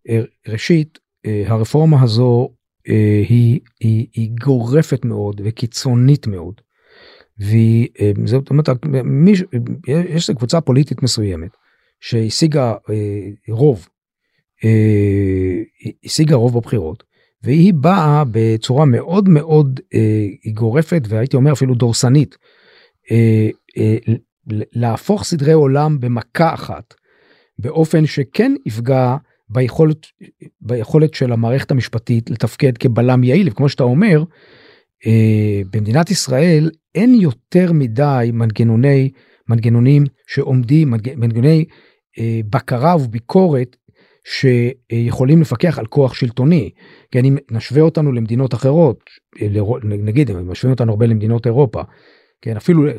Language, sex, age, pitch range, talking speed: Hebrew, male, 50-69, 110-150 Hz, 95 wpm